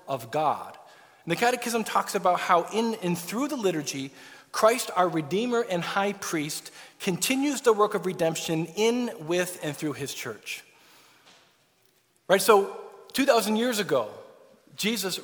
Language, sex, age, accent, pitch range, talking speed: English, male, 40-59, American, 170-225 Hz, 140 wpm